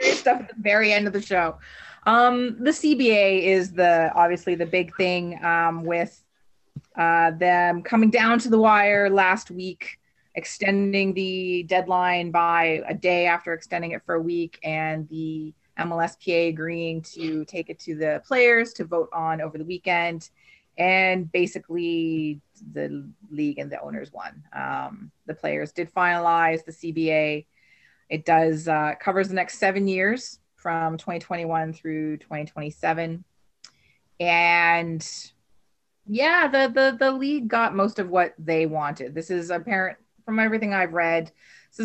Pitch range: 160-190 Hz